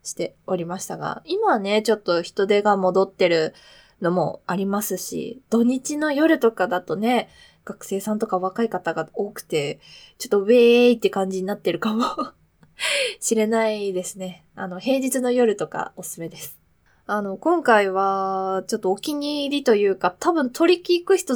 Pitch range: 195-295 Hz